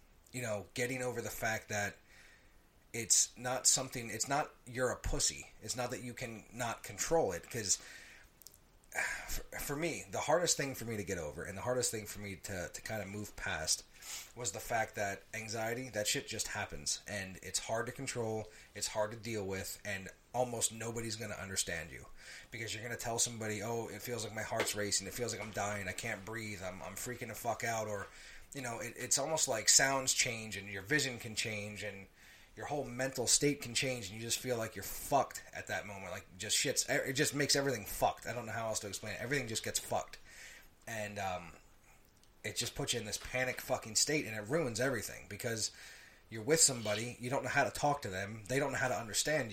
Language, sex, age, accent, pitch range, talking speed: English, male, 30-49, American, 105-125 Hz, 225 wpm